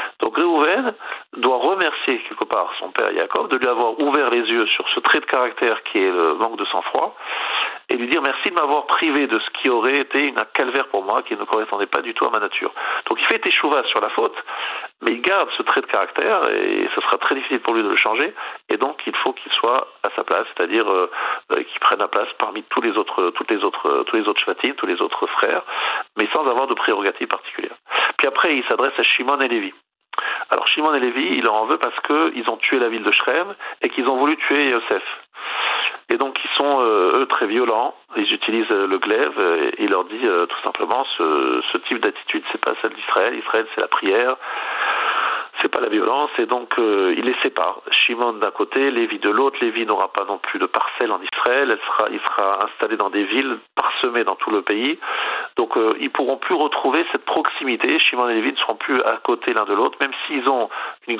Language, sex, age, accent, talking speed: French, male, 50-69, French, 230 wpm